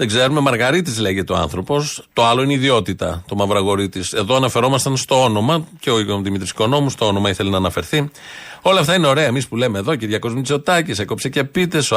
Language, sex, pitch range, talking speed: Greek, male, 110-135 Hz, 205 wpm